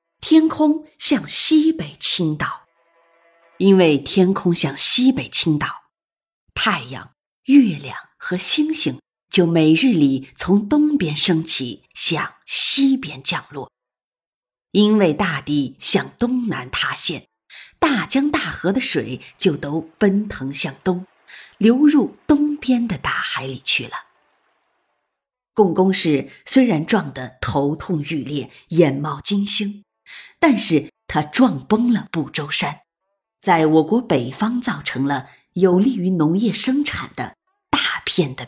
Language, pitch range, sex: Chinese, 150-225 Hz, female